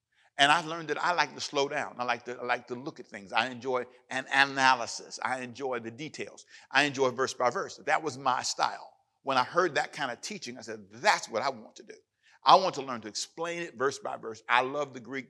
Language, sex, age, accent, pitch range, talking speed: English, male, 50-69, American, 115-155 Hz, 245 wpm